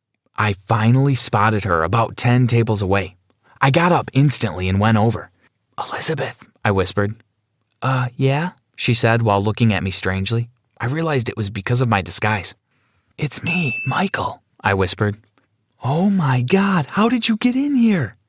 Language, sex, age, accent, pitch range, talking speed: English, male, 30-49, American, 105-130 Hz, 160 wpm